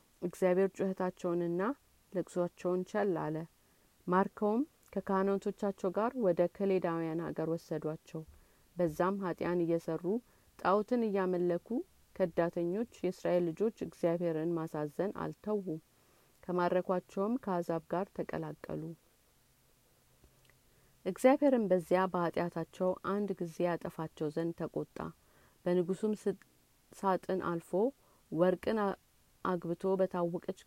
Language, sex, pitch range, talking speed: Amharic, female, 170-195 Hz, 80 wpm